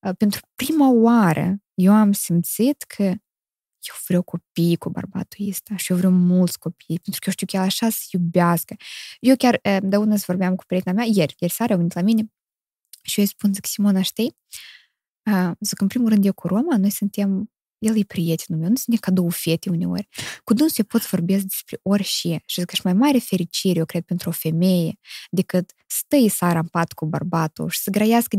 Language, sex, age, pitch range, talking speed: Romanian, female, 20-39, 185-245 Hz, 195 wpm